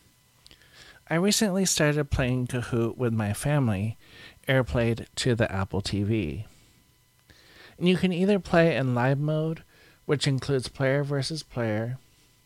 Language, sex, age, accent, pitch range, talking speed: English, male, 40-59, American, 105-145 Hz, 125 wpm